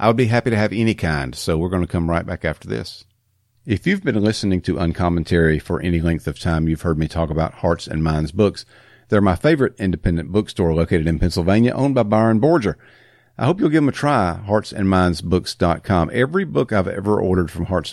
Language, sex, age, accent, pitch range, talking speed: English, male, 50-69, American, 85-115 Hz, 215 wpm